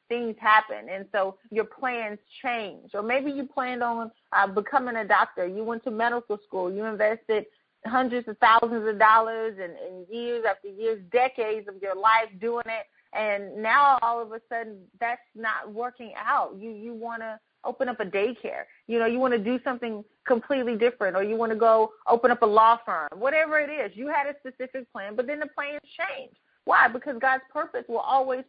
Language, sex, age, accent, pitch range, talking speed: English, female, 30-49, American, 215-265 Hz, 200 wpm